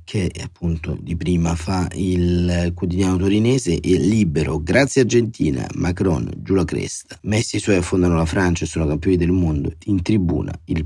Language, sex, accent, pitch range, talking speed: Italian, male, native, 85-95 Hz, 165 wpm